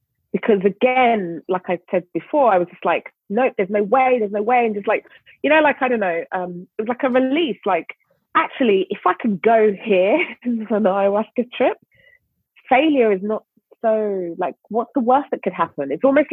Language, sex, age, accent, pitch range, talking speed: English, female, 30-49, British, 180-255 Hz, 205 wpm